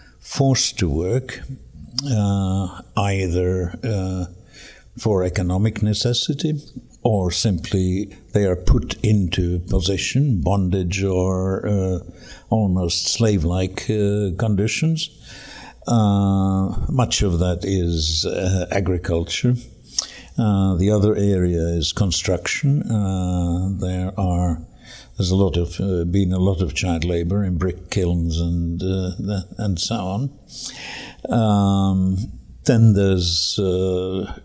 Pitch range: 90-110 Hz